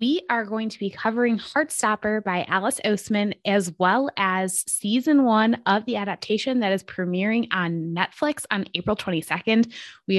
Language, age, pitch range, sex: English, 20-39, 175-220 Hz, female